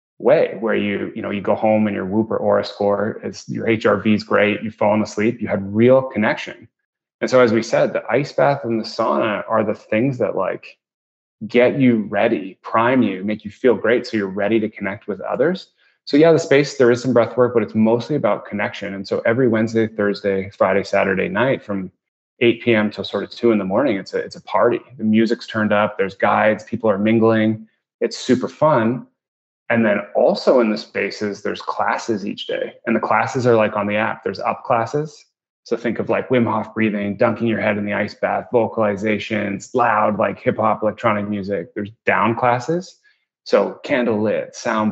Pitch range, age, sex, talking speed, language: 105-115 Hz, 20-39, male, 210 wpm, English